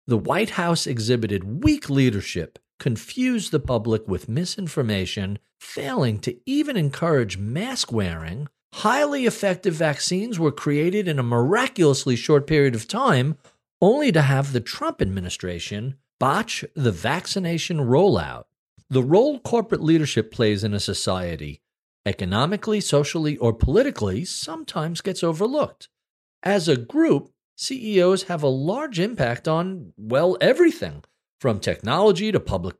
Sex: male